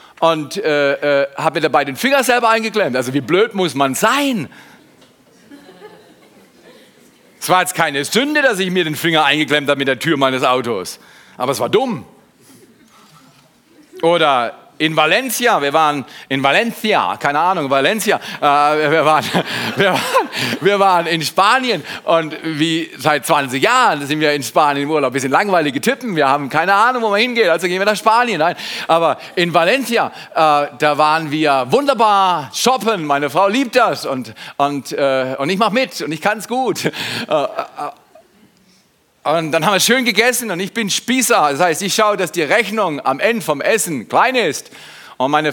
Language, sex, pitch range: German, male, 145-210 Hz